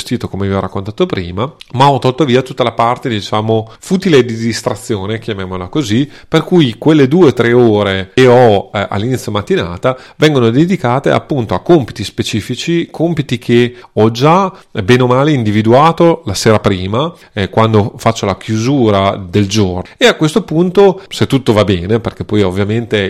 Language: Italian